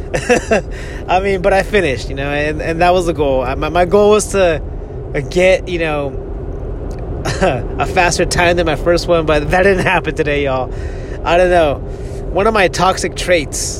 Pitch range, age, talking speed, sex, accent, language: 110-170 Hz, 30-49, 185 wpm, male, American, English